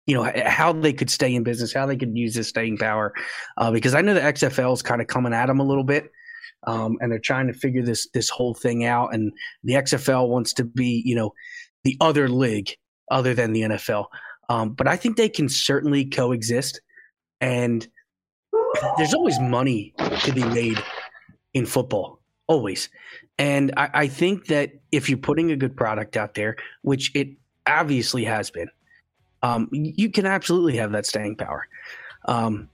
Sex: male